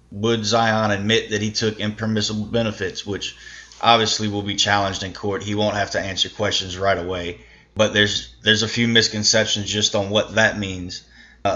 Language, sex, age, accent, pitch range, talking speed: English, male, 20-39, American, 95-110 Hz, 180 wpm